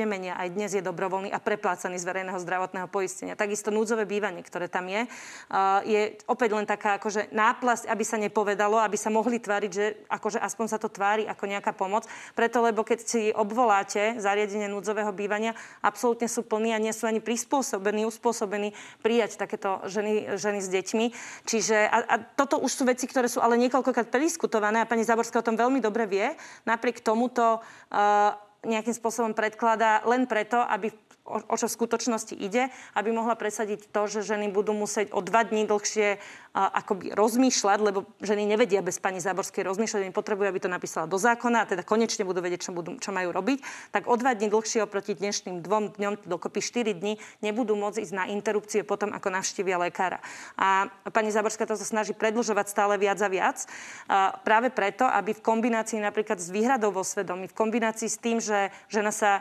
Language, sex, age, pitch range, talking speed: Slovak, female, 30-49, 200-230 Hz, 185 wpm